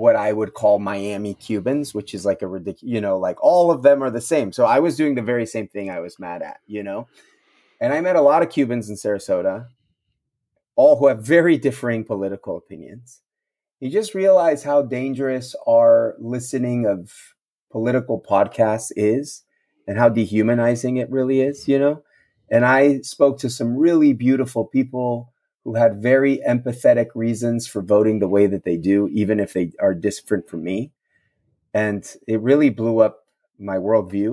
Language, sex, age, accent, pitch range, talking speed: English, male, 30-49, American, 110-150 Hz, 180 wpm